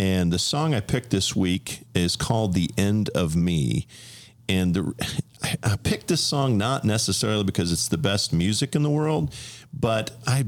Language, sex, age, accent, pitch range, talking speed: English, male, 40-59, American, 100-130 Hz, 170 wpm